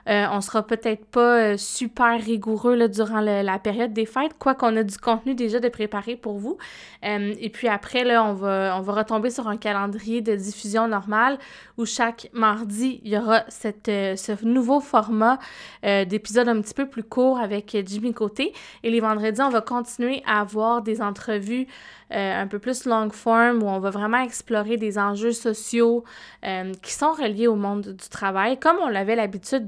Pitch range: 210-240 Hz